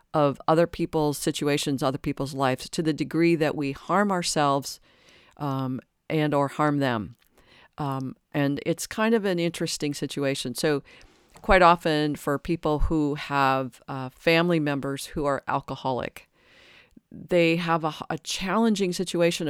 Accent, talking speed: American, 140 wpm